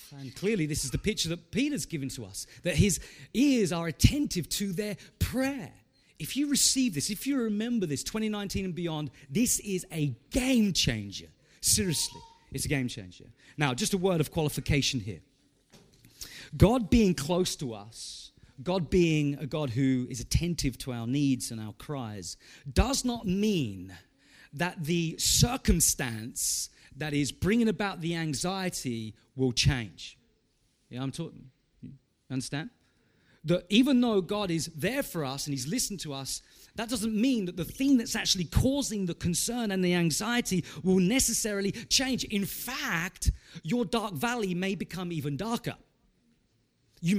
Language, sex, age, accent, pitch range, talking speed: English, male, 40-59, British, 130-205 Hz, 160 wpm